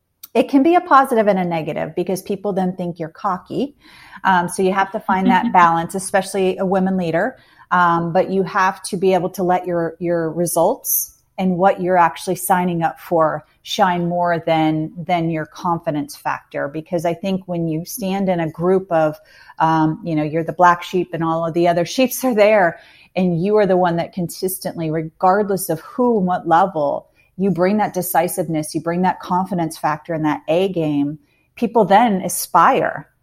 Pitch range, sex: 165-190 Hz, female